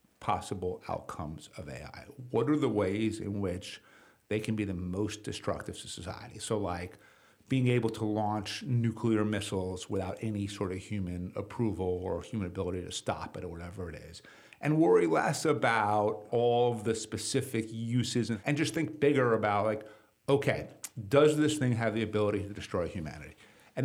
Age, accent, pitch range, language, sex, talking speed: 50-69, American, 105-130 Hz, English, male, 175 wpm